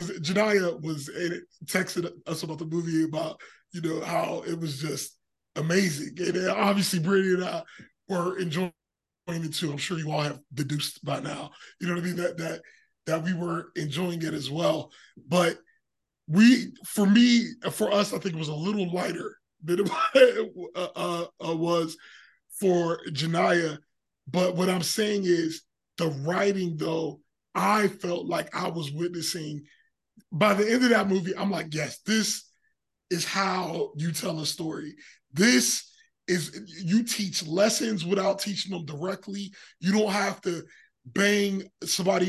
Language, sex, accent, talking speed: English, male, American, 155 wpm